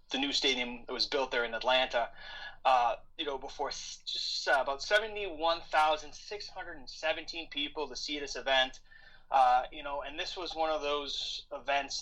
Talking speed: 185 wpm